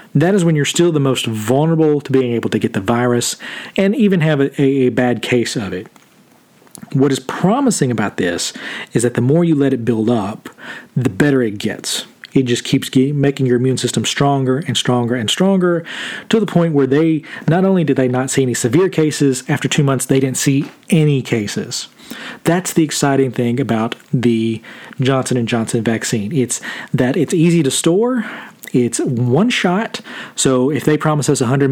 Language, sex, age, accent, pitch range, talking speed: English, male, 40-59, American, 125-165 Hz, 190 wpm